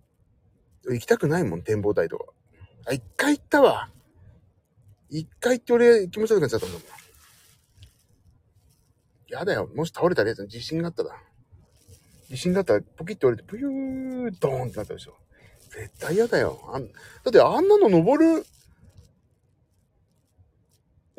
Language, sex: Japanese, male